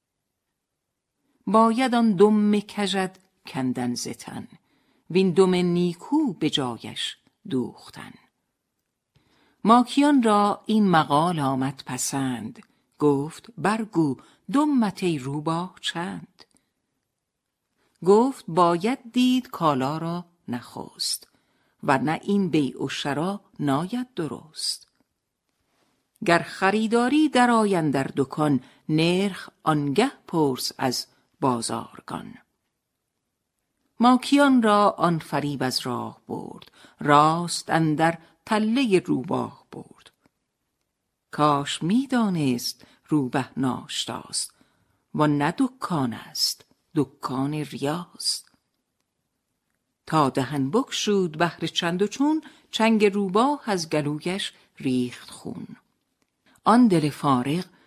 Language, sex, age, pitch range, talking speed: Persian, female, 50-69, 145-215 Hz, 90 wpm